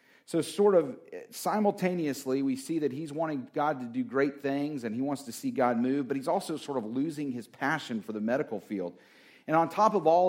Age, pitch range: 40-59, 110-145 Hz